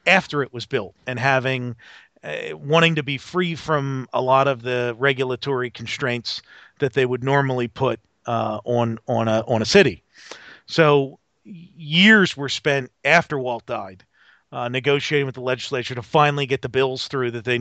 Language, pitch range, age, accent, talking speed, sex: English, 120-155 Hz, 40-59, American, 170 wpm, male